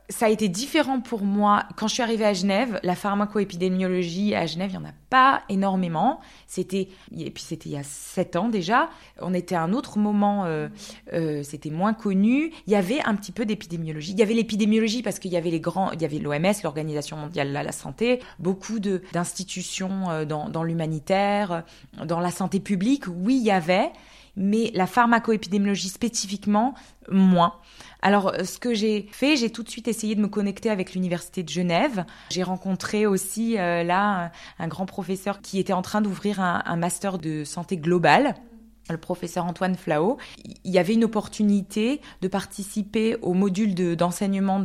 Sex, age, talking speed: female, 20-39, 190 wpm